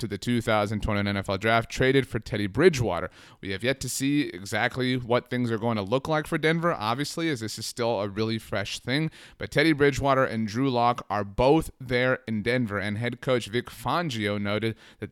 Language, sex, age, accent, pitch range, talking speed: English, male, 30-49, American, 110-135 Hz, 205 wpm